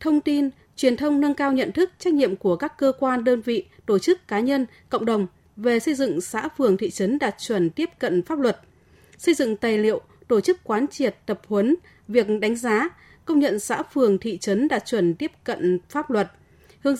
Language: Vietnamese